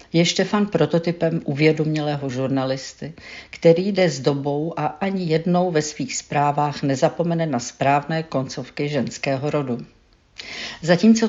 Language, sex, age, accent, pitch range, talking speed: Czech, female, 50-69, native, 135-160 Hz, 115 wpm